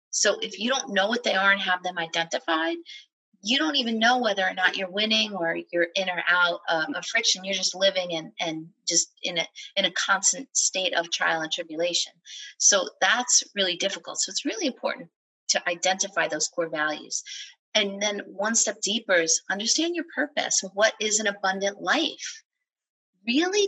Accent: American